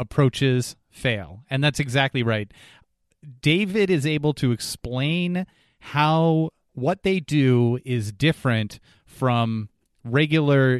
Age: 30-49